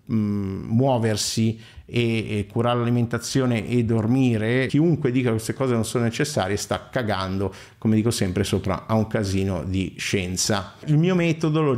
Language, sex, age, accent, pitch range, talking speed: Italian, male, 50-69, native, 110-135 Hz, 155 wpm